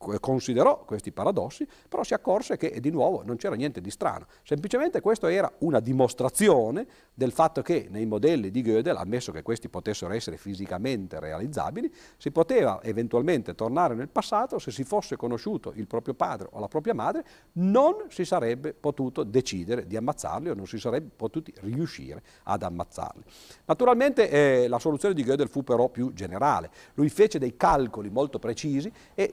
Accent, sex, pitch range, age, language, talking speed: native, male, 110-160 Hz, 50-69, Italian, 170 wpm